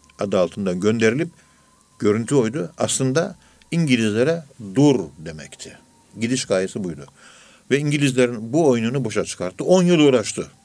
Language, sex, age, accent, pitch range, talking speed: Turkish, male, 50-69, native, 100-130 Hz, 120 wpm